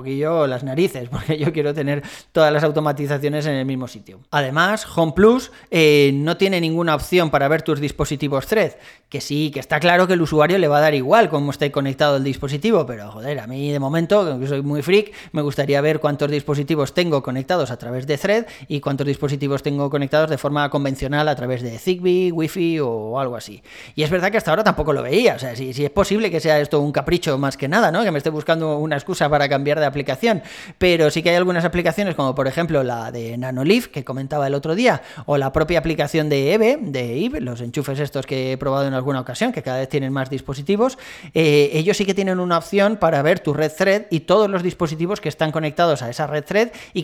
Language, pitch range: Spanish, 140-175 Hz